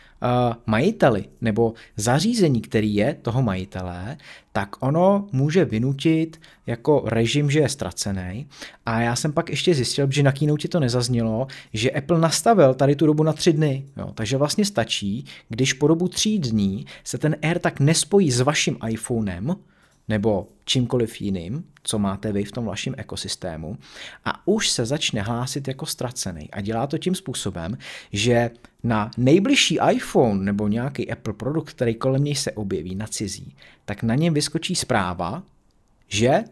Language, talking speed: Czech, 160 wpm